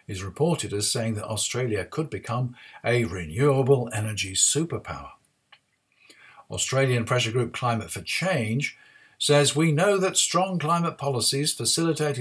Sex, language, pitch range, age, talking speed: male, English, 115-150 Hz, 60-79, 130 wpm